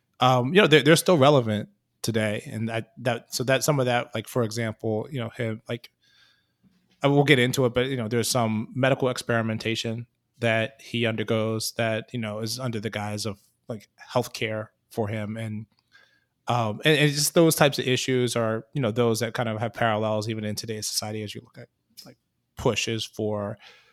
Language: English